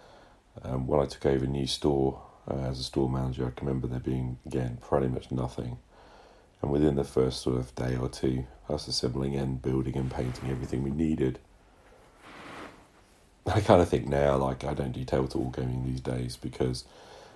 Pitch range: 65-75 Hz